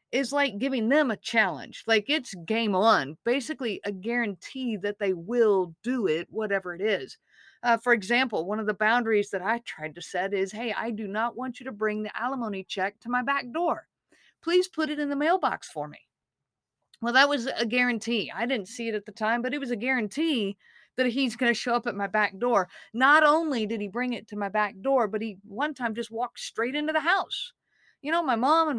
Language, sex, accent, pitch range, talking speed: English, female, American, 210-270 Hz, 225 wpm